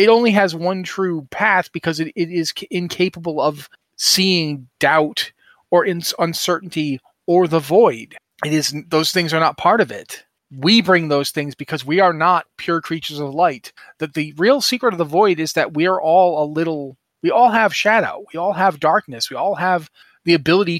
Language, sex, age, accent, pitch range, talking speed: English, male, 30-49, American, 145-185 Hz, 200 wpm